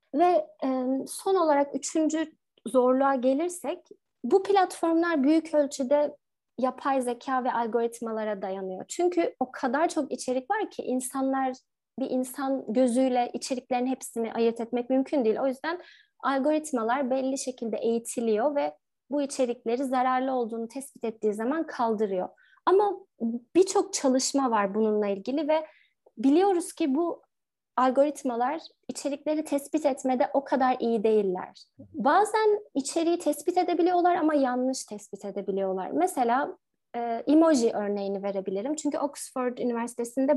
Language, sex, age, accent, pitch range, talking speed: Turkish, female, 30-49, native, 235-315 Hz, 120 wpm